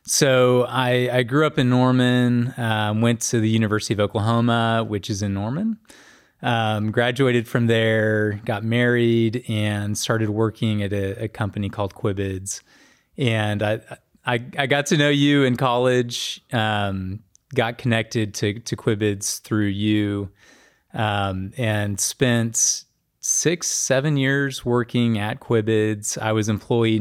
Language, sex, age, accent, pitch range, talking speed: English, male, 30-49, American, 105-120 Hz, 140 wpm